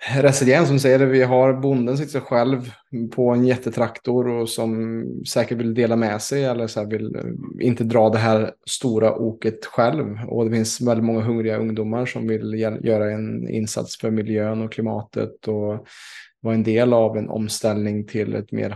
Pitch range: 110-120 Hz